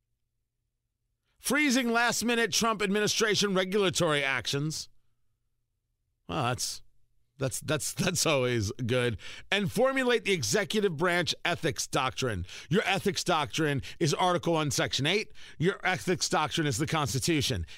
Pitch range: 115-195 Hz